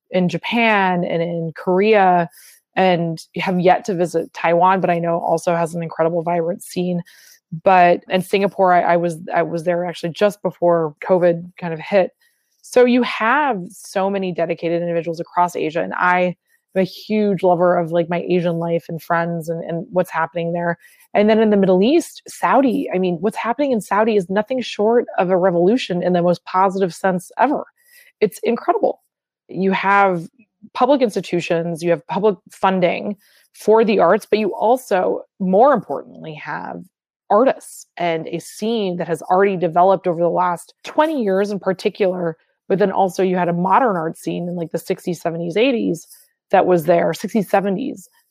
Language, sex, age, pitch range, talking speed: English, female, 20-39, 175-210 Hz, 175 wpm